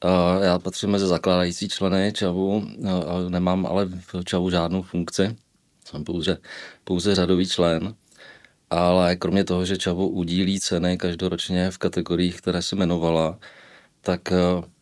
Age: 40-59